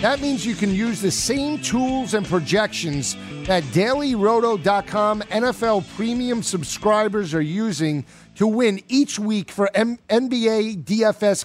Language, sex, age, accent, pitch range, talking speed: English, male, 50-69, American, 185-235 Hz, 125 wpm